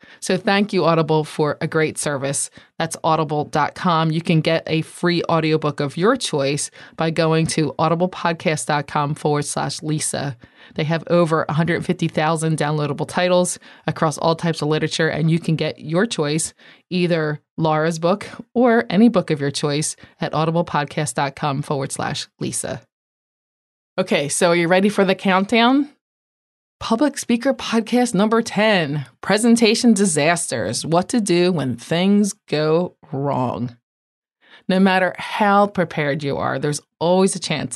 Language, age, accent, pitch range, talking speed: English, 20-39, American, 150-190 Hz, 140 wpm